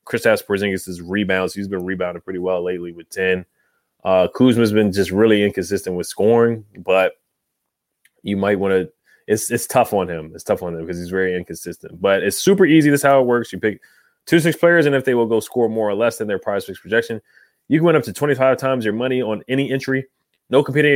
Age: 20-39